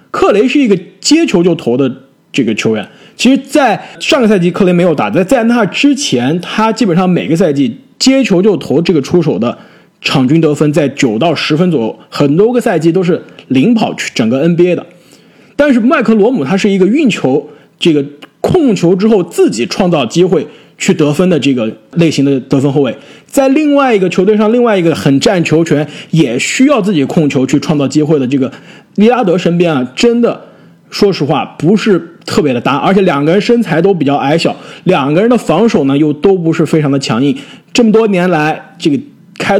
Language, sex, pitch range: Chinese, male, 150-220 Hz